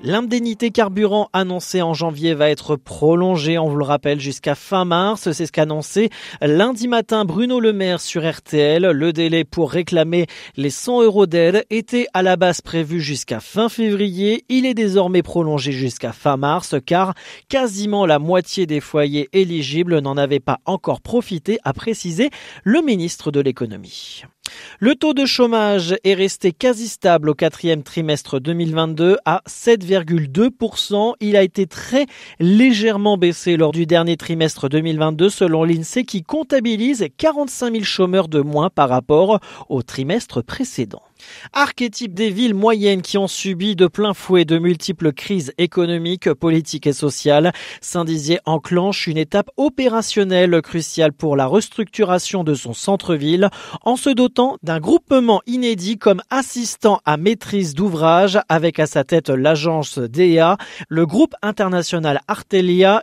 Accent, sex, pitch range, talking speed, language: French, male, 160-215 Hz, 150 wpm, French